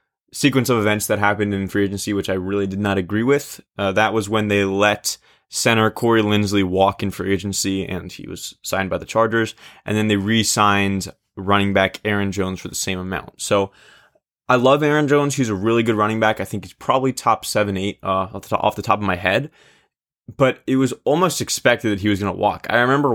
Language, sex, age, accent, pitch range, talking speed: English, male, 20-39, American, 95-115 Hz, 220 wpm